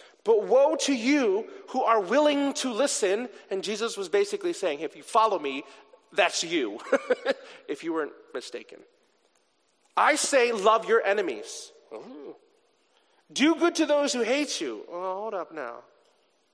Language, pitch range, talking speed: English, 280-425 Hz, 150 wpm